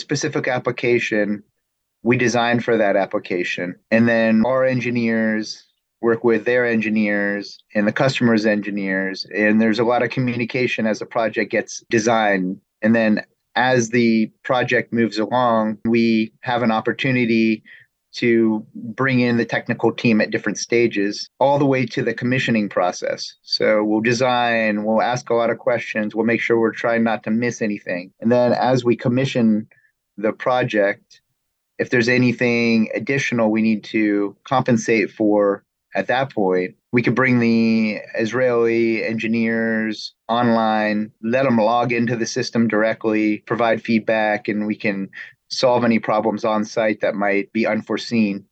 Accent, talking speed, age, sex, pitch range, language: American, 150 wpm, 30-49, male, 110-120 Hz, English